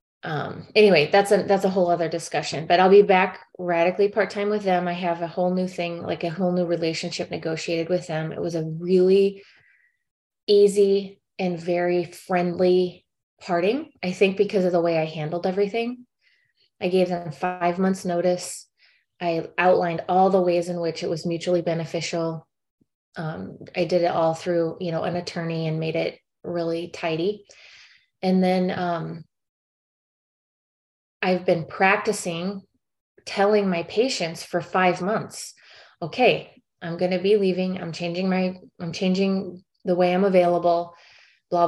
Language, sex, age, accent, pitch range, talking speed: English, female, 20-39, American, 170-195 Hz, 160 wpm